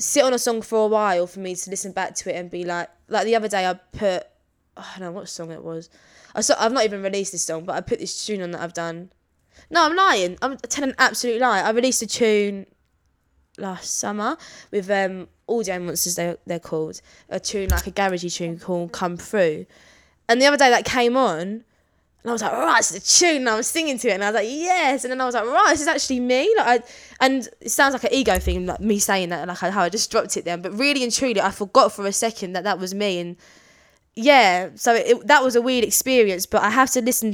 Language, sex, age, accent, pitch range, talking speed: English, female, 20-39, British, 180-240 Hz, 260 wpm